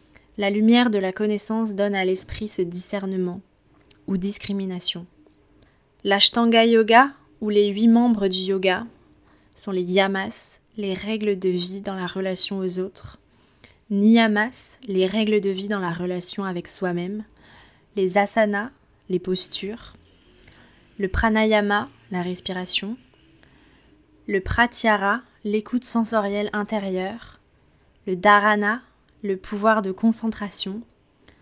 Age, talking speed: 20-39, 115 wpm